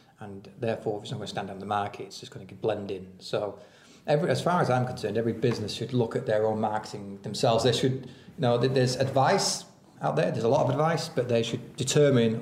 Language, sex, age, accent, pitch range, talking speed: English, male, 30-49, British, 110-130 Hz, 245 wpm